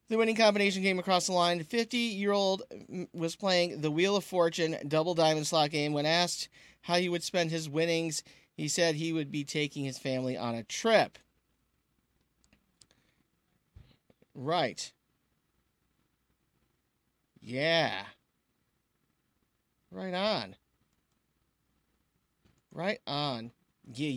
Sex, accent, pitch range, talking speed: male, American, 130-190 Hz, 110 wpm